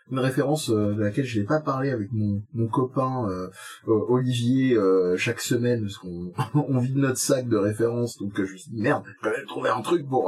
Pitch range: 105-135 Hz